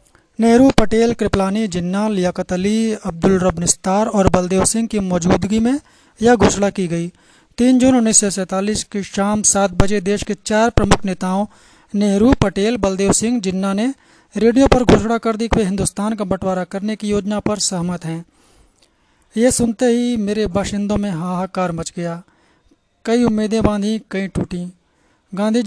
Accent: native